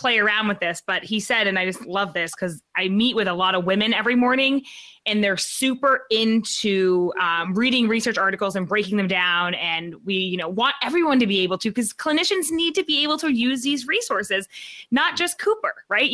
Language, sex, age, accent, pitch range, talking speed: English, female, 20-39, American, 195-270 Hz, 215 wpm